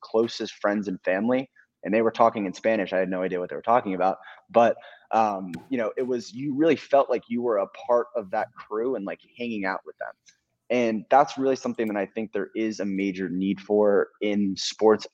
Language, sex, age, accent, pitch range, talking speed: English, male, 20-39, American, 90-110 Hz, 225 wpm